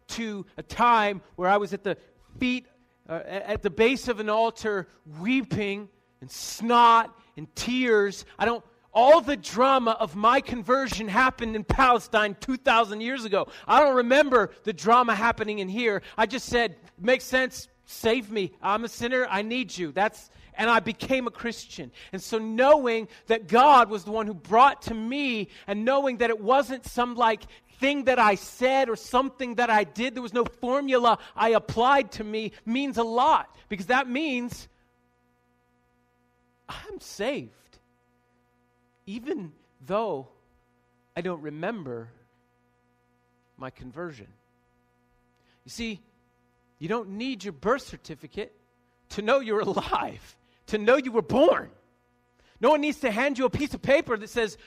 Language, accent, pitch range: English, American, 165-250 Hz